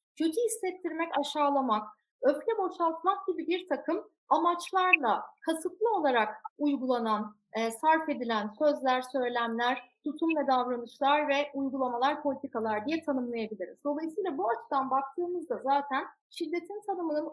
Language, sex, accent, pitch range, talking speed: Turkish, female, native, 255-330 Hz, 105 wpm